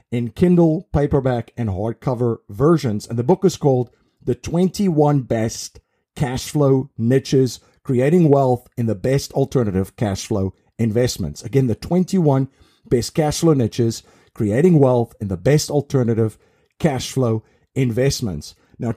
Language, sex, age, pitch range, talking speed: English, male, 50-69, 115-145 Hz, 140 wpm